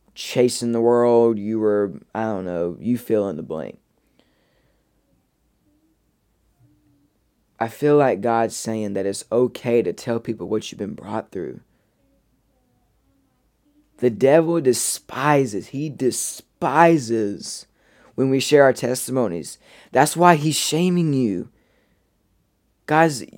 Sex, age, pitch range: male, 20-39, 115-150 Hz